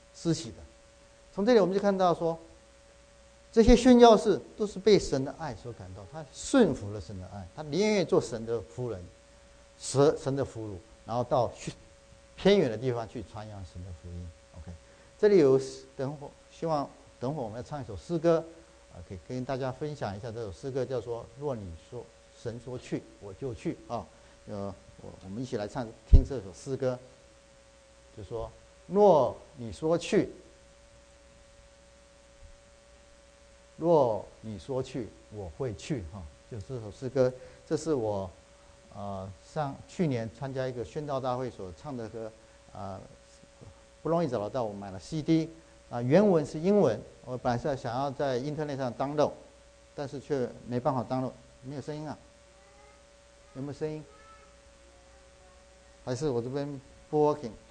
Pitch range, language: 105-150 Hz, English